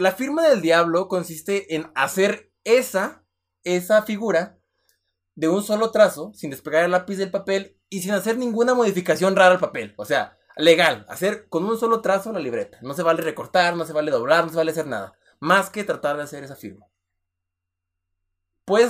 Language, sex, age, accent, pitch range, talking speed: Spanish, male, 20-39, Mexican, 125-200 Hz, 185 wpm